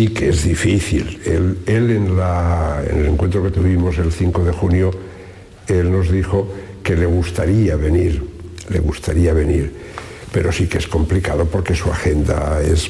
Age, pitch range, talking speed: 60-79, 90-110 Hz, 165 wpm